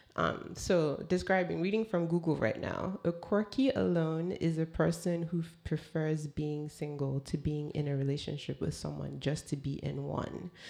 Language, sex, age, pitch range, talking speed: English, female, 20-39, 150-190 Hz, 175 wpm